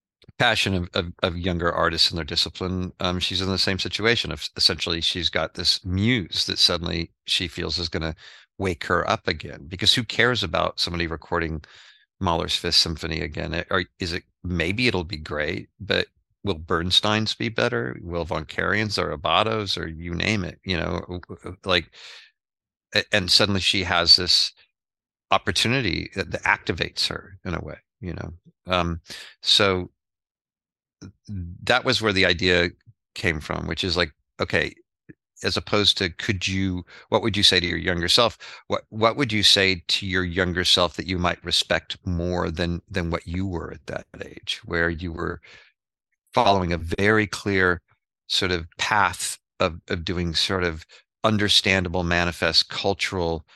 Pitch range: 85-100 Hz